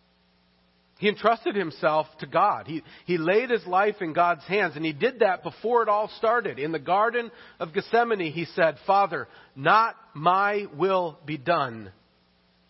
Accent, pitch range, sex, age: American, 135-210 Hz, male, 40-59